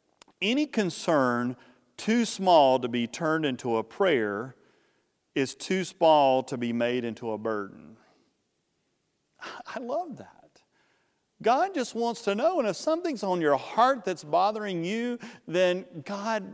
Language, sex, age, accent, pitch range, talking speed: English, male, 40-59, American, 135-210 Hz, 140 wpm